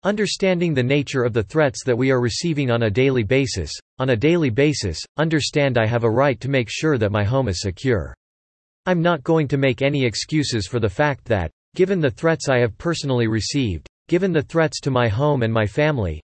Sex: male